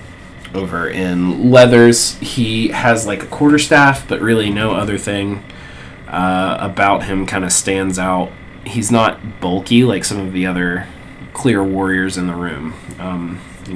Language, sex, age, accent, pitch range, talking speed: English, male, 20-39, American, 90-115 Hz, 155 wpm